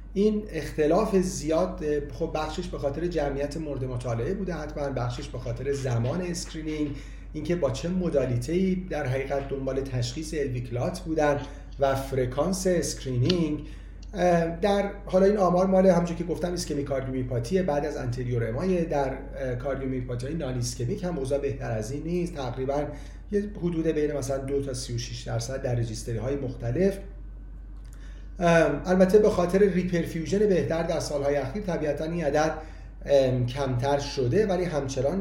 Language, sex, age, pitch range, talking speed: Persian, male, 40-59, 130-175 Hz, 140 wpm